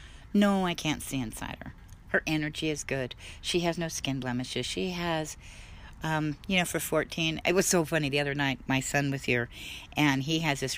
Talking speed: 205 wpm